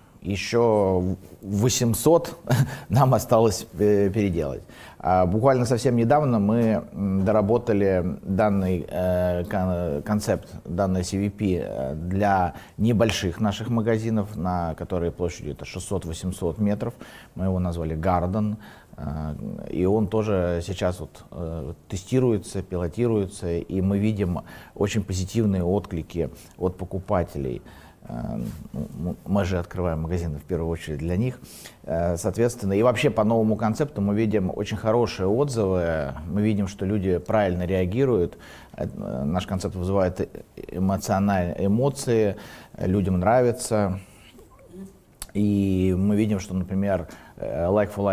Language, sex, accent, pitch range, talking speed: Russian, male, native, 90-105 Hz, 100 wpm